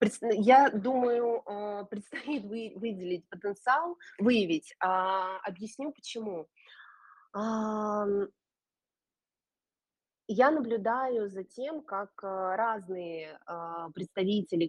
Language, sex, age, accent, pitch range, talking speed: Russian, female, 20-39, native, 170-215 Hz, 60 wpm